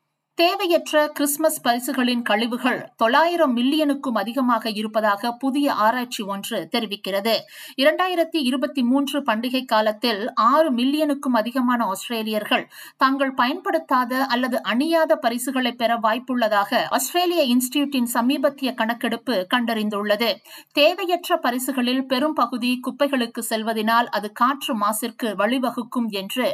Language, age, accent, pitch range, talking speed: Tamil, 50-69, native, 225-280 Hz, 95 wpm